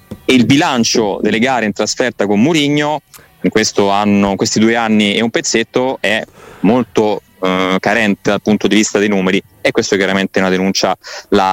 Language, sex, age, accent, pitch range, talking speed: Italian, male, 20-39, native, 100-120 Hz, 180 wpm